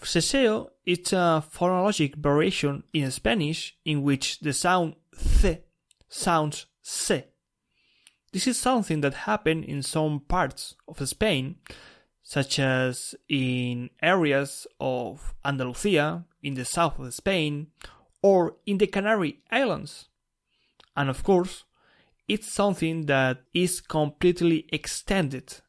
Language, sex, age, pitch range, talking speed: English, male, 30-49, 140-175 Hz, 115 wpm